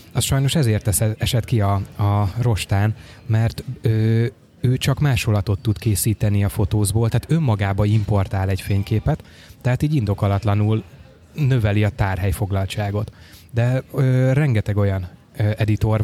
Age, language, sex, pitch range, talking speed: 20-39, Hungarian, male, 100-125 Hz, 115 wpm